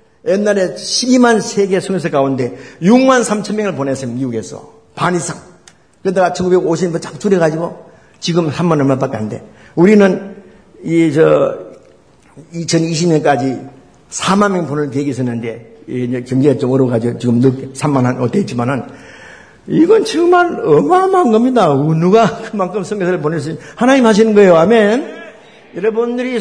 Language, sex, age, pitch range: Korean, male, 50-69, 145-210 Hz